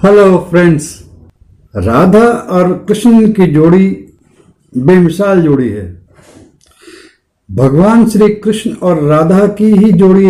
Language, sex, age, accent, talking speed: Hindi, male, 50-69, native, 105 wpm